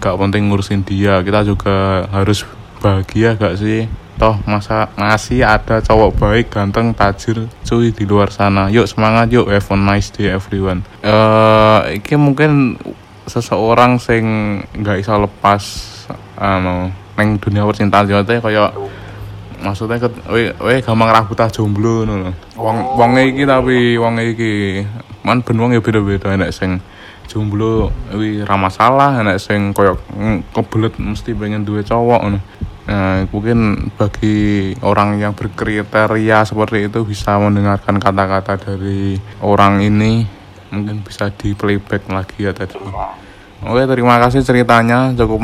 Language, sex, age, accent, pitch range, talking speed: Indonesian, male, 20-39, native, 100-115 Hz, 135 wpm